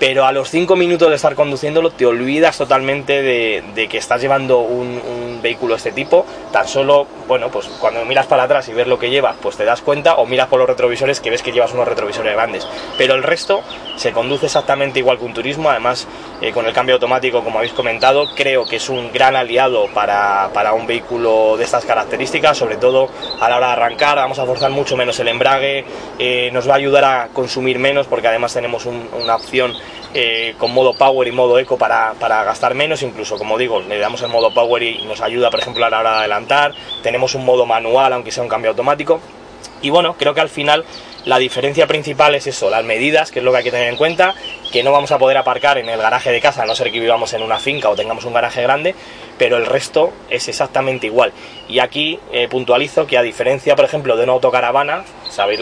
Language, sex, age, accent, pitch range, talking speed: Spanish, male, 20-39, Spanish, 120-140 Hz, 230 wpm